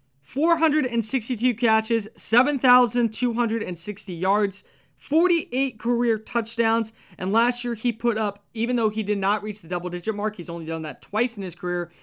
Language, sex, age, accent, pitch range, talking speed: English, male, 20-39, American, 175-225 Hz, 150 wpm